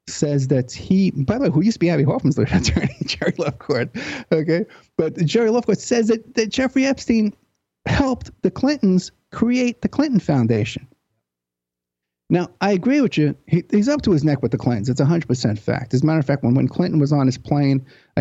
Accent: American